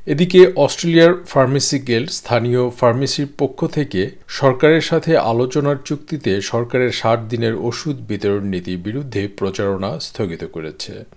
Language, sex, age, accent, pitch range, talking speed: Bengali, male, 50-69, native, 110-145 Hz, 115 wpm